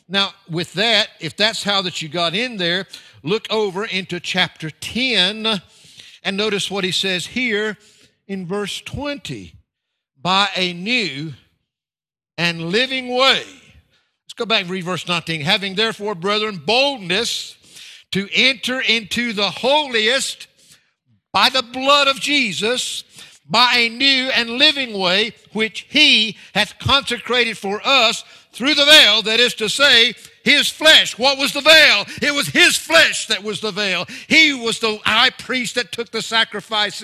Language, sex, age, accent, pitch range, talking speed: English, male, 60-79, American, 170-230 Hz, 150 wpm